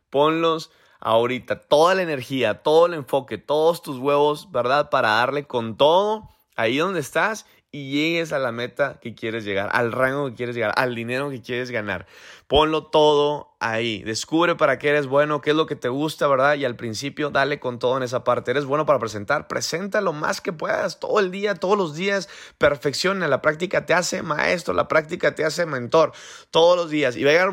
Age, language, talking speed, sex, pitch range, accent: 30-49, Spanish, 205 wpm, male, 125-160 Hz, Mexican